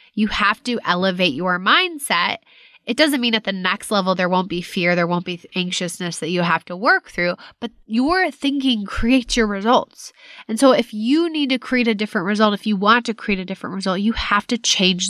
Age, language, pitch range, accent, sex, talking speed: 20-39, English, 185-255 Hz, American, female, 220 wpm